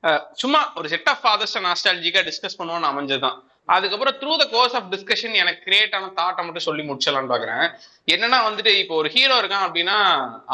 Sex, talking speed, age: male, 140 wpm, 20-39